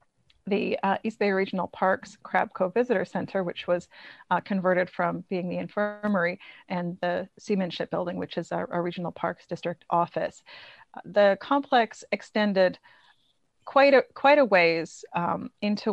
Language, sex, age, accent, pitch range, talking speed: English, female, 30-49, American, 175-205 Hz, 155 wpm